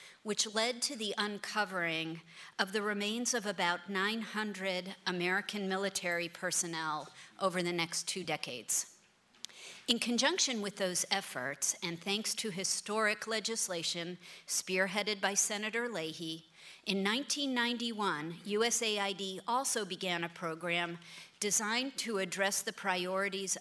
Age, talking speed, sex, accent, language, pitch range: 40-59, 115 wpm, female, American, English, 175-210 Hz